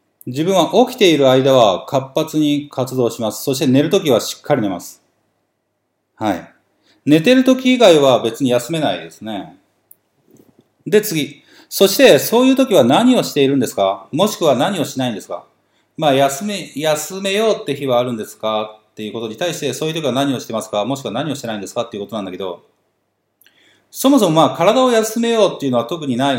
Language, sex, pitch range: Japanese, male, 120-195 Hz